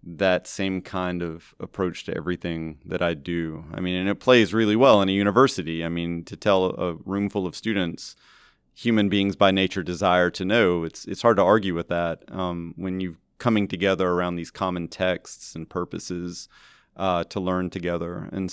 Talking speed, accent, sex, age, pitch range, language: 190 wpm, American, male, 30-49, 90-105 Hz, English